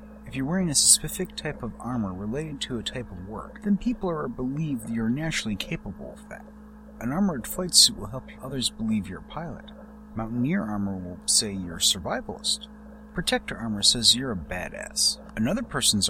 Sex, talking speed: male, 185 wpm